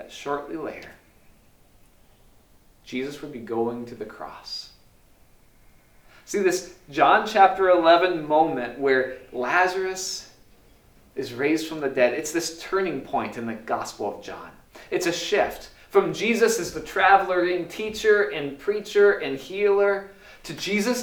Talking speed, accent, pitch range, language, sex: 135 wpm, American, 120-190 Hz, English, male